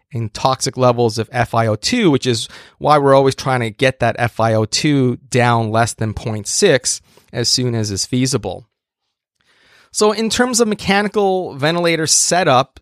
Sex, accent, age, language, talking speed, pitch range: male, American, 30-49, English, 145 wpm, 110-135 Hz